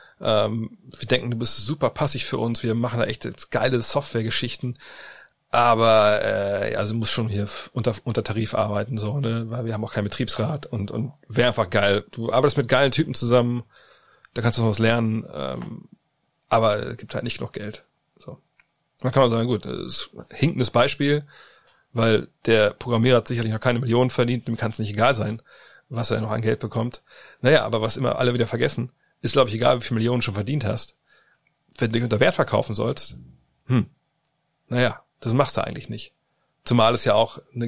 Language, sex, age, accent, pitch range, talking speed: German, male, 30-49, German, 110-125 Hz, 200 wpm